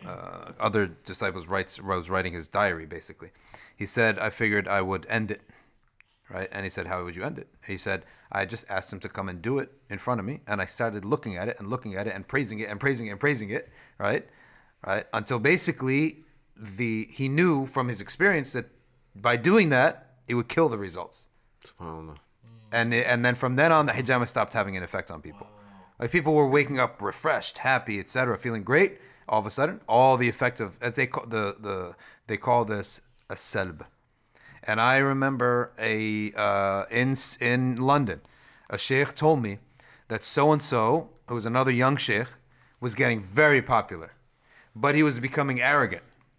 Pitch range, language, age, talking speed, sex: 105-135 Hz, English, 30-49, 195 wpm, male